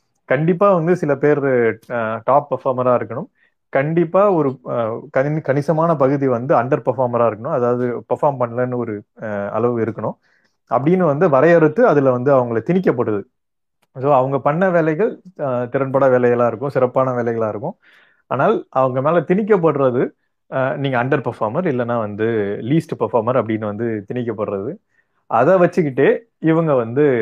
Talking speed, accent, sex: 125 wpm, native, male